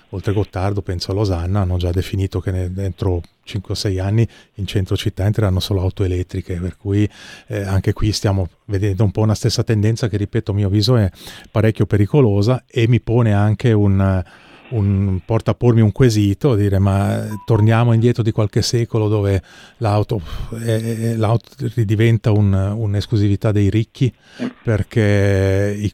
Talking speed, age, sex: 165 wpm, 30-49, male